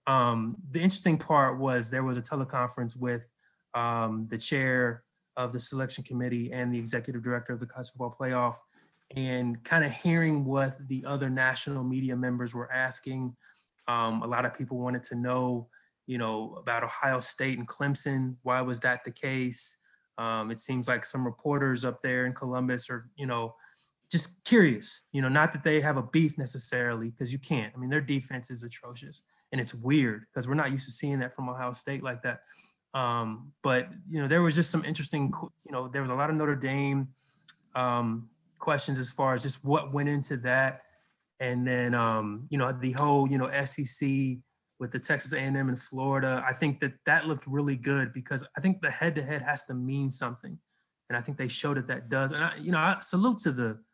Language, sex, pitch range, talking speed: English, male, 125-145 Hz, 200 wpm